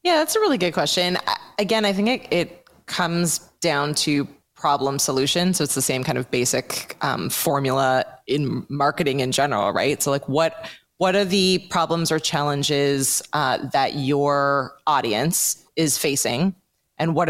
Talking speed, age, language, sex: 165 wpm, 20-39, English, female